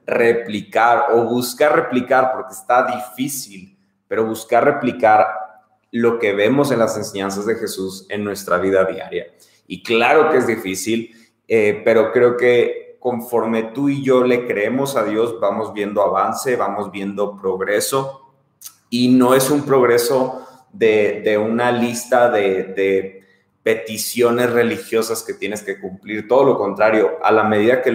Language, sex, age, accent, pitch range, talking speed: Spanish, male, 30-49, Mexican, 100-125 Hz, 150 wpm